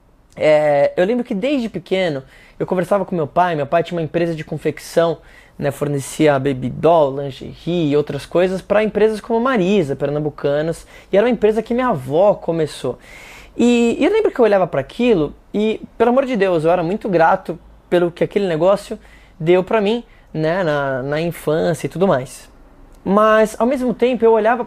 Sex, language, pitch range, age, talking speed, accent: male, Portuguese, 165-225 Hz, 20-39, 185 wpm, Brazilian